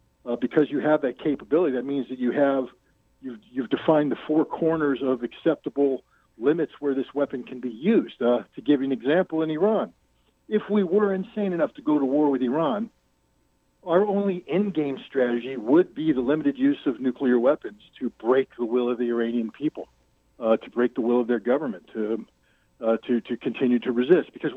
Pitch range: 130-165 Hz